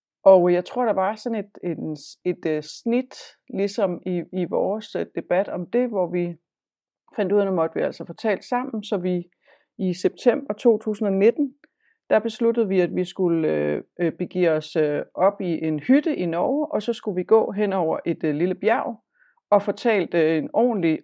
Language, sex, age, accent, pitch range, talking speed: Danish, female, 30-49, native, 180-235 Hz, 180 wpm